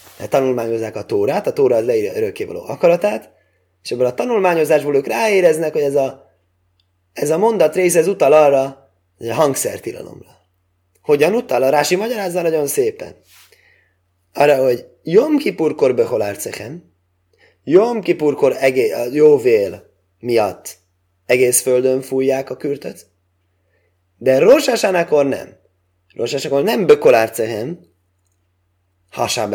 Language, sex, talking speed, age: Hungarian, male, 120 wpm, 30-49